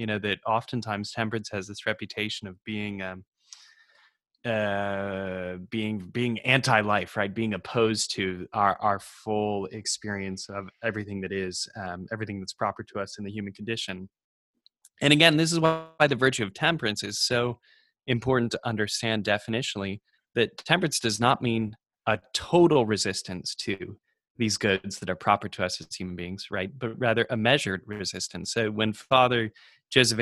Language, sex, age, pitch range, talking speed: English, male, 20-39, 100-120 Hz, 160 wpm